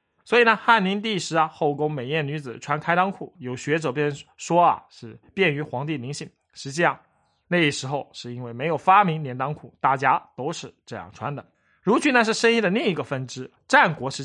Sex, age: male, 20-39